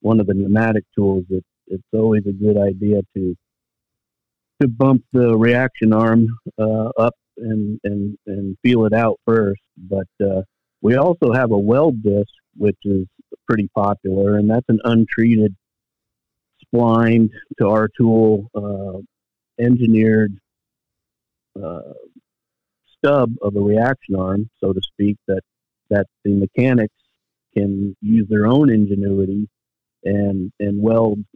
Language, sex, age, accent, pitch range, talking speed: English, male, 50-69, American, 100-115 Hz, 130 wpm